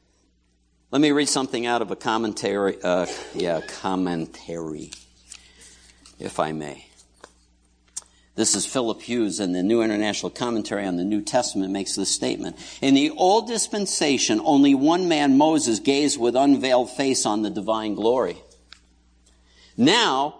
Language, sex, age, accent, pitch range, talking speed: English, male, 60-79, American, 100-160 Hz, 140 wpm